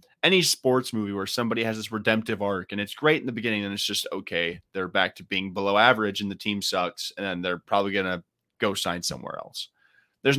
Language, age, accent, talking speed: English, 30-49, American, 225 wpm